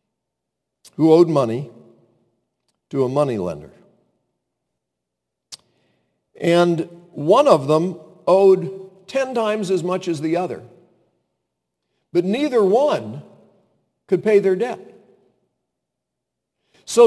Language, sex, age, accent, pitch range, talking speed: English, male, 50-69, American, 150-215 Hz, 90 wpm